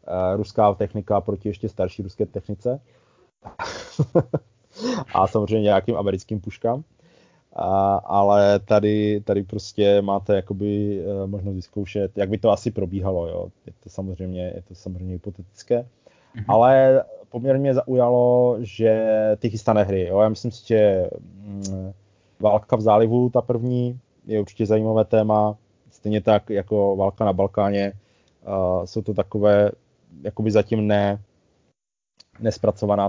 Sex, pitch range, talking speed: male, 95-115 Hz, 115 wpm